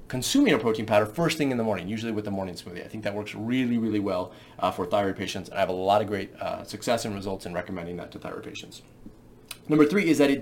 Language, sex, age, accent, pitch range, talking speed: English, male, 30-49, American, 105-150 Hz, 270 wpm